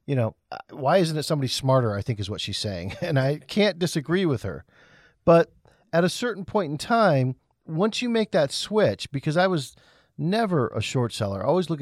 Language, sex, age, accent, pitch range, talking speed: English, male, 40-59, American, 120-165 Hz, 210 wpm